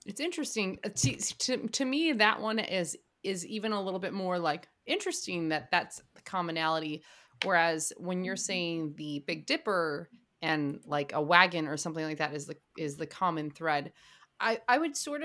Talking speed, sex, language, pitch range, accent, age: 185 wpm, female, English, 150-190 Hz, American, 30-49